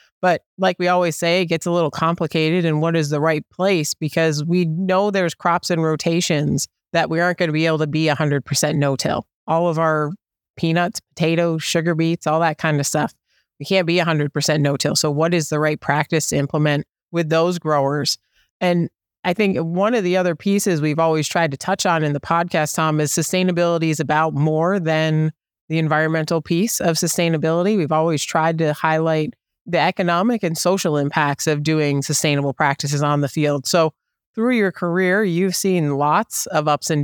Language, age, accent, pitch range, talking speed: English, 30-49, American, 150-180 Hz, 190 wpm